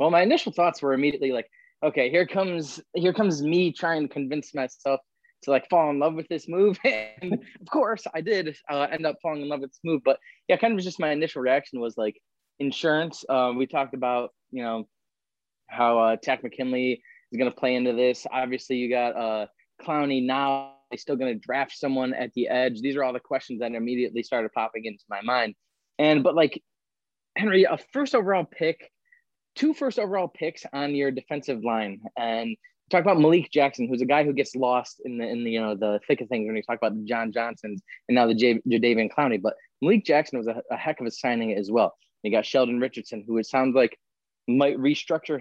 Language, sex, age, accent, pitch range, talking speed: English, male, 20-39, American, 125-160 Hz, 220 wpm